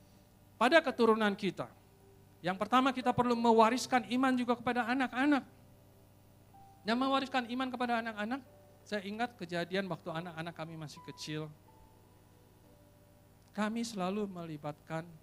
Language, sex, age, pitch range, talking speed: Indonesian, male, 50-69, 125-195 Hz, 110 wpm